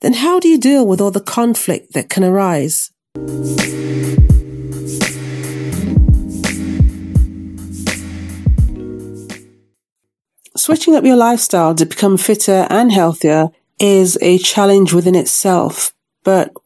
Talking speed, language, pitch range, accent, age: 95 wpm, English, 170-235 Hz, British, 40-59